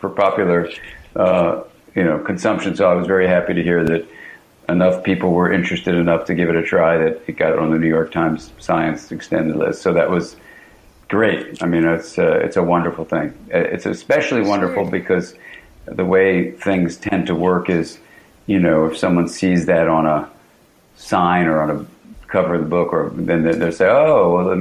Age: 50-69